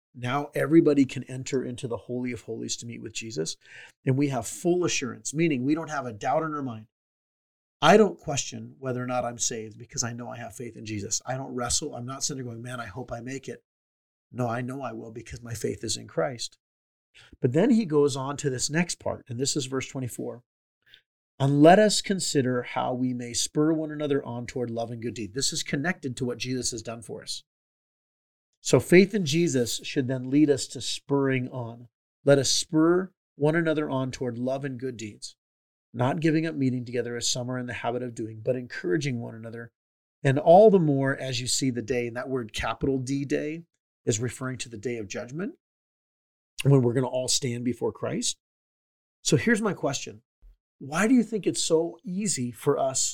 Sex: male